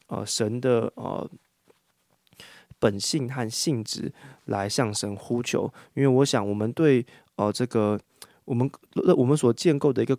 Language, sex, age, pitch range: Chinese, male, 20-39, 110-130 Hz